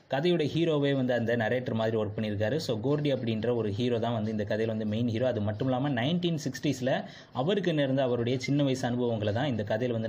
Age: 20-39